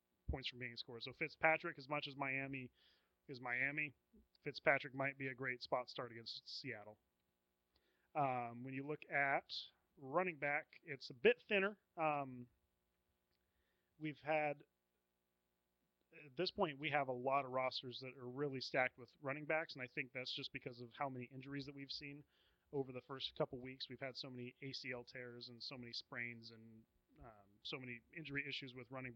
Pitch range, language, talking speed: 120-145 Hz, English, 180 wpm